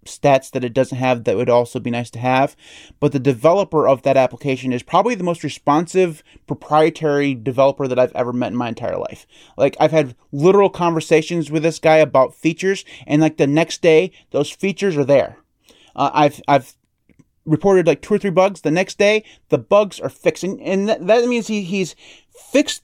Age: 30-49